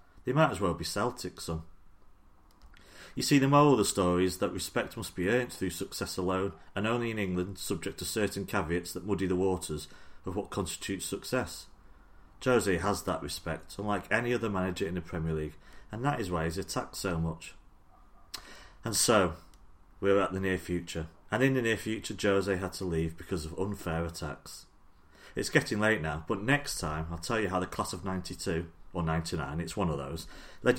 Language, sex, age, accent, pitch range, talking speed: English, male, 40-59, British, 80-105 Hz, 200 wpm